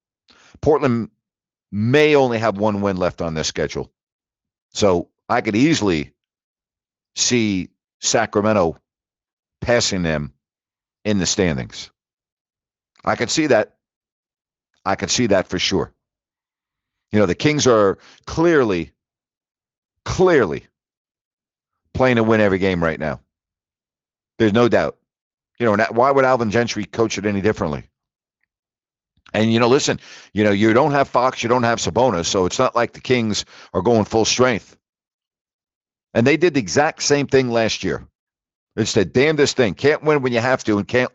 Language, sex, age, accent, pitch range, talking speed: English, male, 50-69, American, 100-130 Hz, 150 wpm